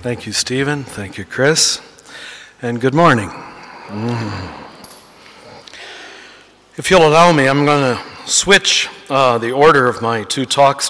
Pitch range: 125-150 Hz